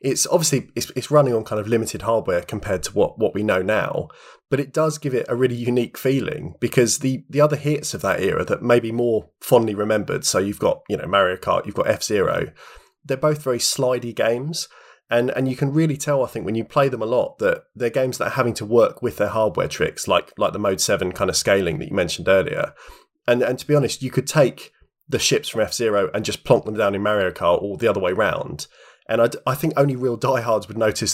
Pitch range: 105-135 Hz